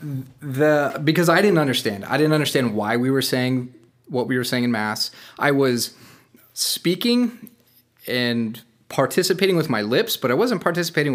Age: 30-49